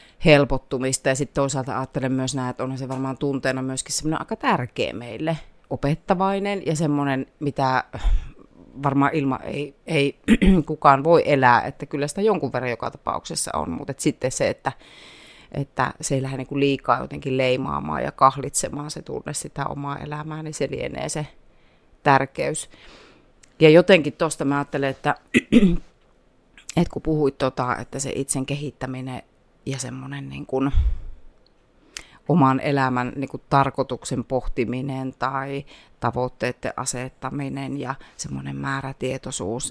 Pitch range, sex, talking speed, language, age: 130-145 Hz, female, 140 wpm, Finnish, 30-49